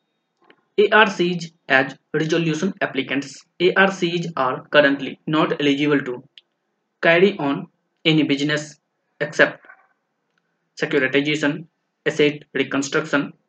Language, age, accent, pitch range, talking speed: Hindi, 20-39, native, 145-180 Hz, 90 wpm